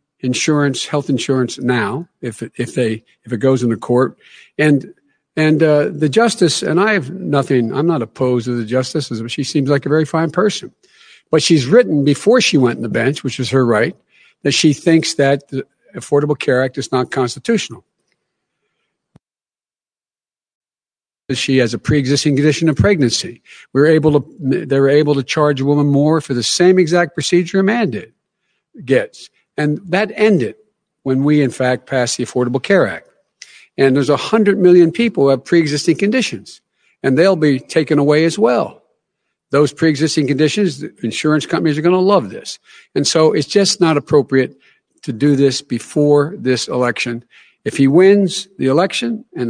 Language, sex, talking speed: English, male, 170 wpm